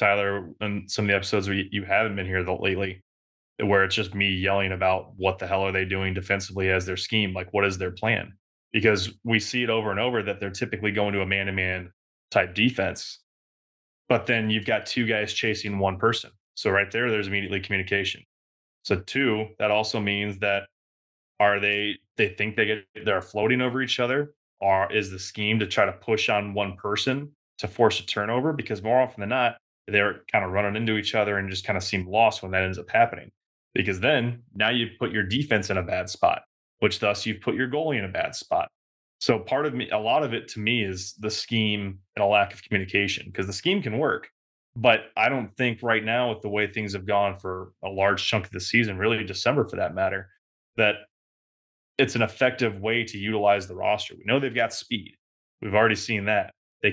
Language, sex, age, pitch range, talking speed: English, male, 20-39, 95-110 Hz, 220 wpm